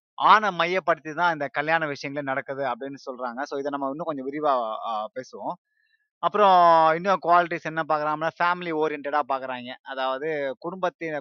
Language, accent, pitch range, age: Tamil, native, 135-165 Hz, 20-39